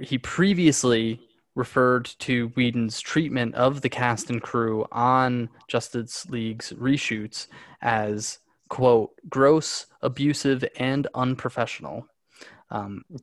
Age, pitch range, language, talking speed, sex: 20-39, 115-145 Hz, English, 100 wpm, male